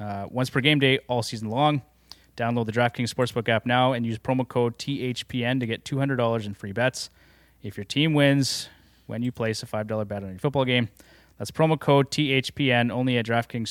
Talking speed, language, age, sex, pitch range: 200 wpm, English, 20-39, male, 110-135 Hz